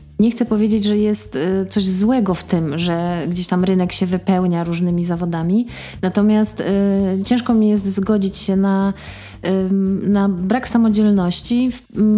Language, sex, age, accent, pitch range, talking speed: Polish, female, 20-39, native, 180-205 Hz, 140 wpm